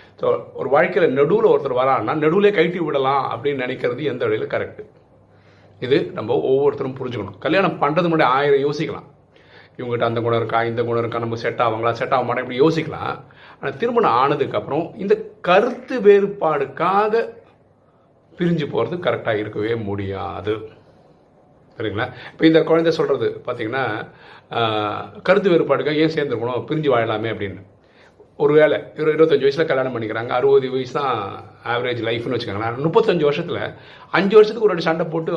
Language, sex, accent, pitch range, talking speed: Tamil, male, native, 115-185 Hz, 135 wpm